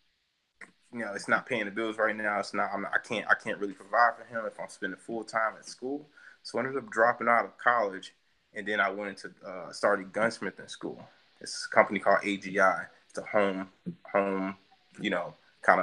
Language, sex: English, male